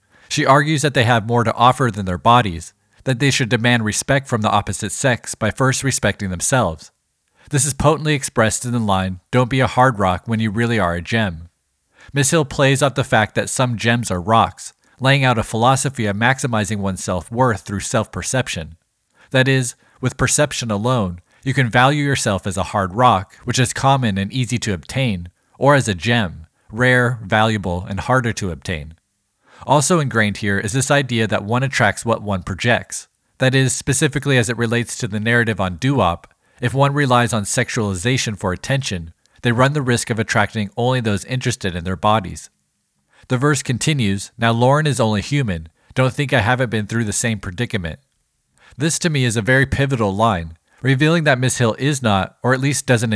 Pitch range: 100-130 Hz